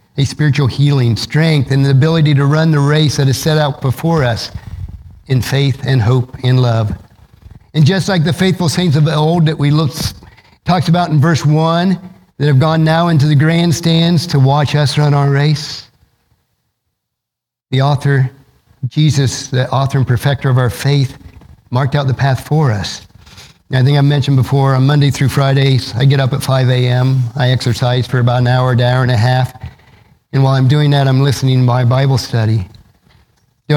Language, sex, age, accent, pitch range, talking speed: English, male, 50-69, American, 120-145 Hz, 185 wpm